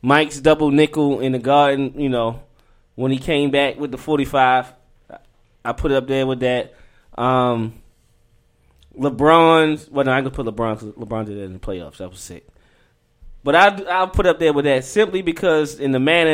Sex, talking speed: male, 185 wpm